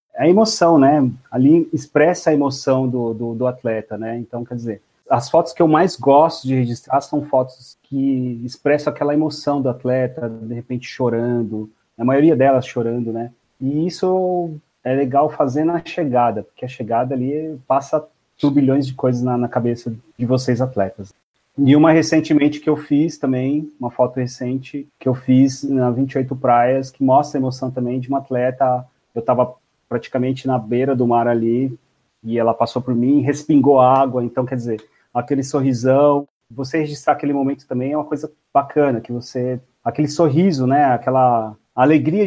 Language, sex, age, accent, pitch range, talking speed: Portuguese, male, 30-49, Brazilian, 125-150 Hz, 170 wpm